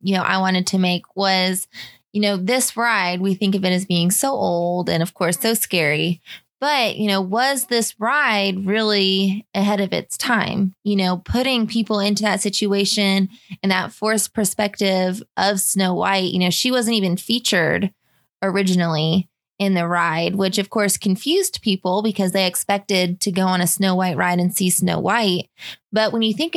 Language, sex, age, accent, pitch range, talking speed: English, female, 20-39, American, 185-220 Hz, 185 wpm